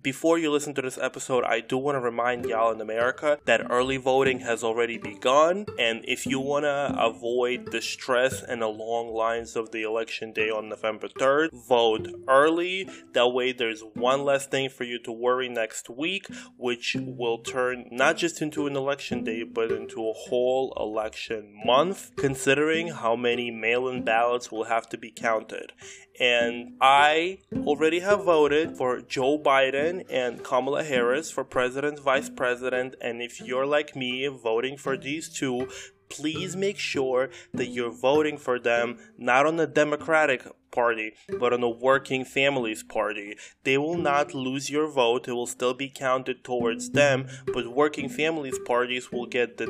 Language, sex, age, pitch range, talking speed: English, male, 20-39, 115-140 Hz, 170 wpm